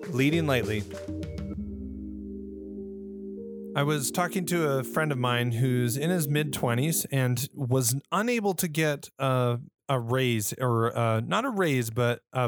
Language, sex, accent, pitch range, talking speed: English, male, American, 125-160 Hz, 140 wpm